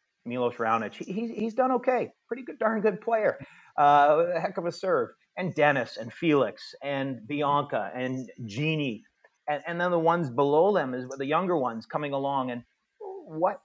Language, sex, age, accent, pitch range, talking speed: English, male, 30-49, American, 125-155 Hz, 180 wpm